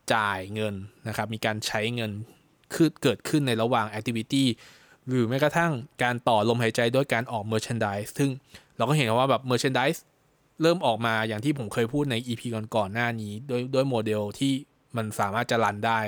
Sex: male